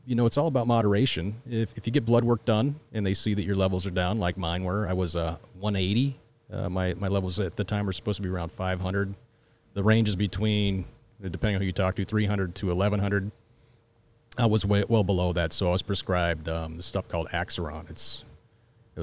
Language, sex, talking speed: English, male, 225 wpm